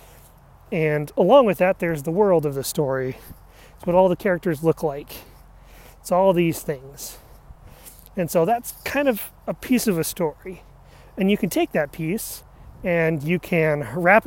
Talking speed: 175 wpm